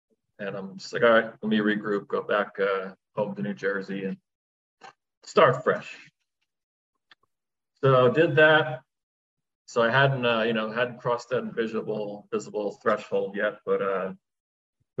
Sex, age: male, 40-59